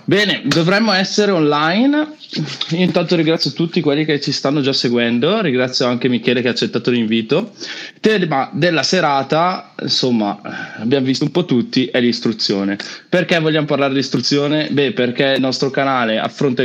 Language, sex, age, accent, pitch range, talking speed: Italian, male, 20-39, native, 120-150 Hz, 150 wpm